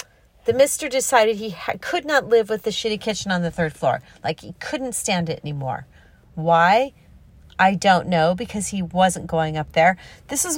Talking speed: 185 wpm